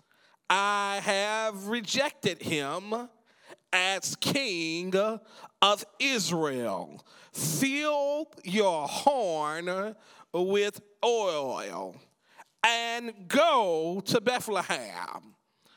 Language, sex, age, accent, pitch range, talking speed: English, male, 40-59, American, 190-245 Hz, 65 wpm